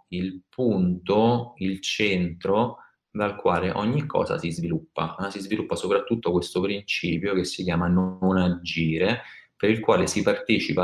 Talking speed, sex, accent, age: 140 wpm, male, native, 30-49